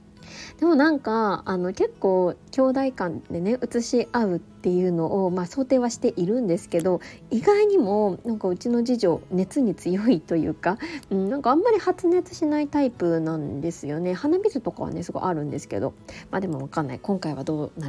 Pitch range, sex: 180-260 Hz, female